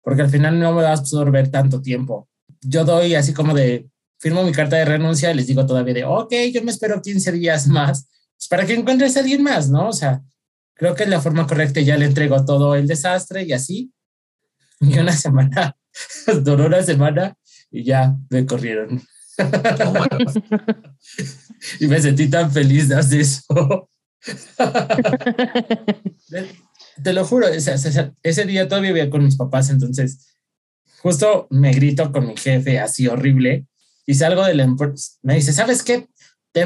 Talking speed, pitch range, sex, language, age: 170 wpm, 135-175 Hz, male, Spanish, 20-39